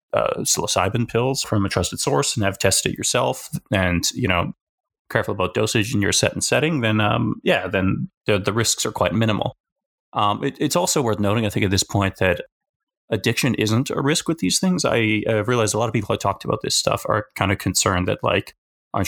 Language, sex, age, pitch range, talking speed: English, male, 20-39, 100-120 Hz, 220 wpm